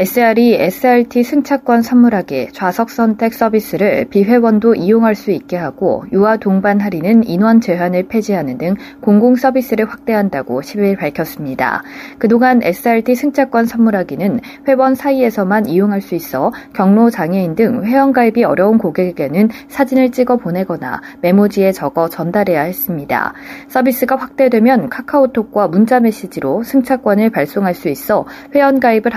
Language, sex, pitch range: Korean, female, 185-250 Hz